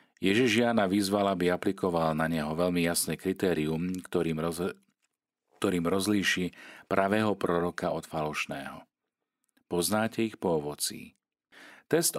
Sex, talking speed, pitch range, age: male, 115 wpm, 80-100 Hz, 40-59